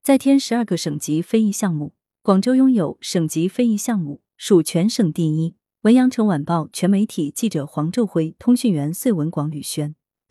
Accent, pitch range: native, 155-225 Hz